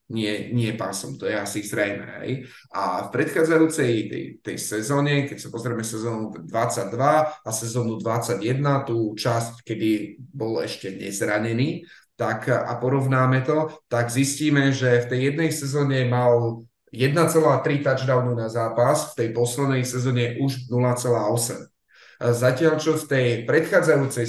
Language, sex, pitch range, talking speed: Slovak, male, 115-135 Hz, 135 wpm